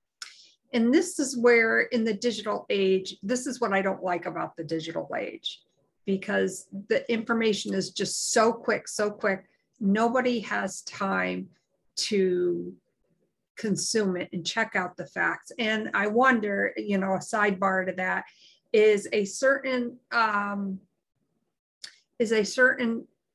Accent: American